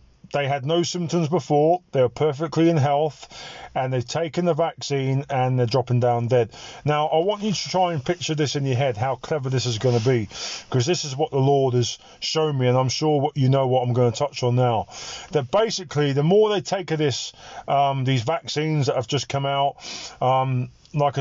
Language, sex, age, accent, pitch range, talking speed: English, male, 30-49, British, 120-145 Hz, 225 wpm